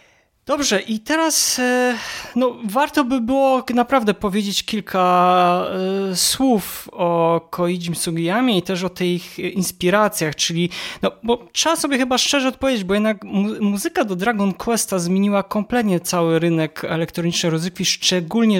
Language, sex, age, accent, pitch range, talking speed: Polish, male, 20-39, native, 170-210 Hz, 130 wpm